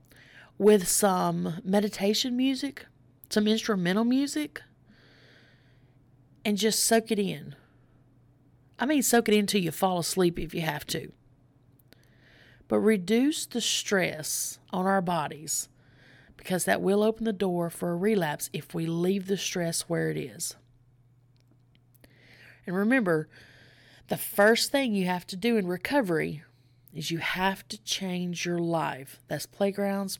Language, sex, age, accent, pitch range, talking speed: English, female, 30-49, American, 125-200 Hz, 135 wpm